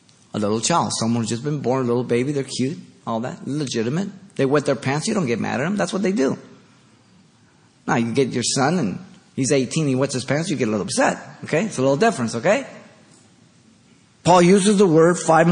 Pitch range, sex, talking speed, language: 130-160 Hz, male, 230 wpm, English